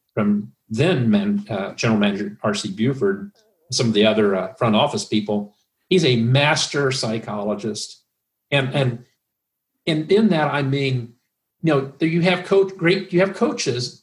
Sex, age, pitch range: male, 50-69, 110-150 Hz